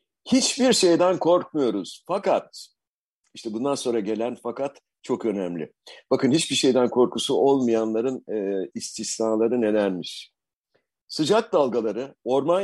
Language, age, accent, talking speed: Turkish, 60-79, native, 105 wpm